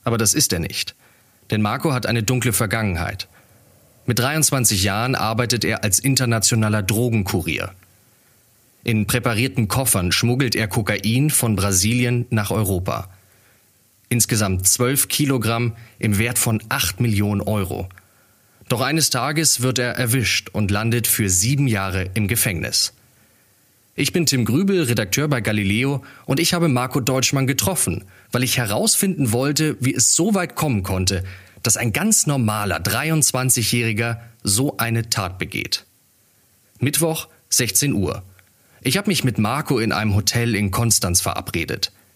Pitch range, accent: 105-130 Hz, German